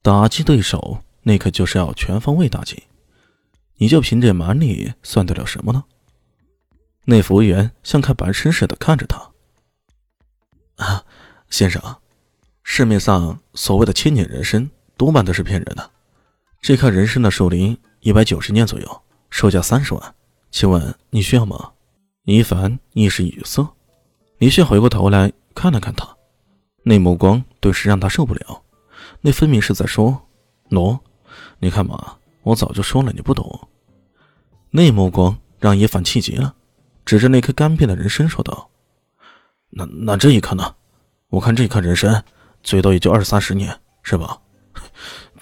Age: 20-39